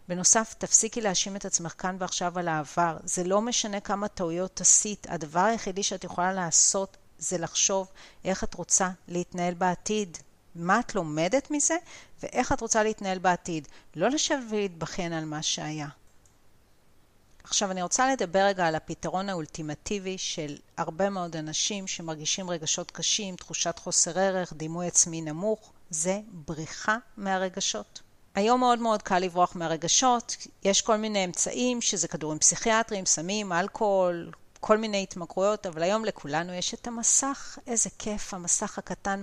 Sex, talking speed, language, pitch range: female, 145 wpm, Hebrew, 170-210 Hz